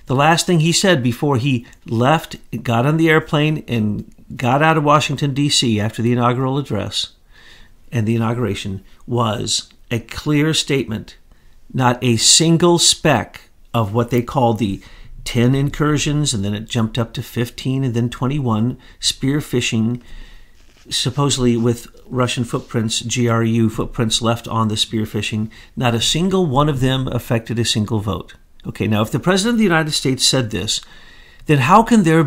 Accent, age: American, 50-69